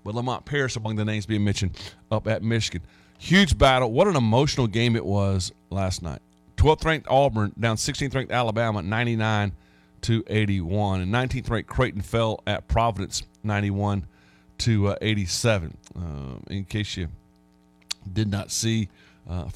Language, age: English, 40-59